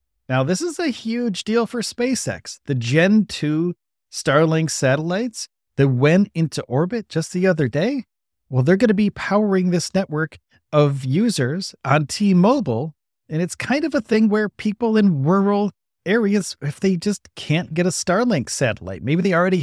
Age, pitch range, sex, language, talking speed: 40-59, 135-195 Hz, male, English, 170 wpm